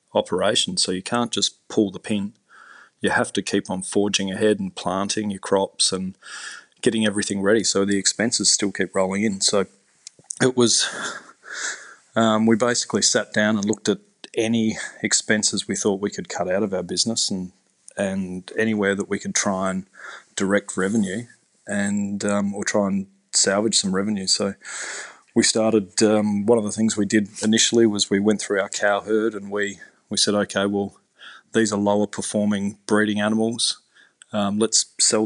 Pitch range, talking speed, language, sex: 100-110 Hz, 175 wpm, English, male